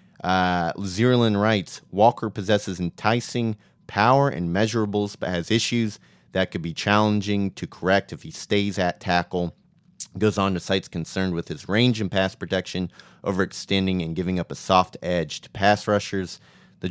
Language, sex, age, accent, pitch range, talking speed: English, male, 30-49, American, 90-110 Hz, 160 wpm